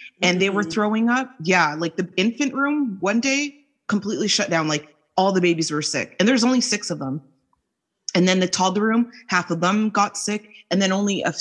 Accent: American